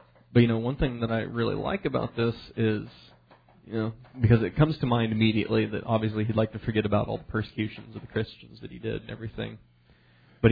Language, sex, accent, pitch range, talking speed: English, male, American, 110-125 Hz, 220 wpm